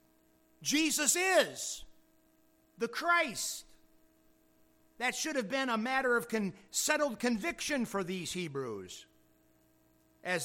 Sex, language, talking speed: male, English, 100 wpm